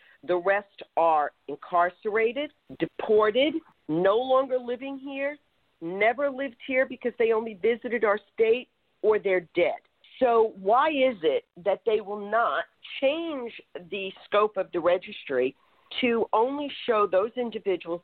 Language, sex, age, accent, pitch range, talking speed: English, female, 50-69, American, 175-255 Hz, 135 wpm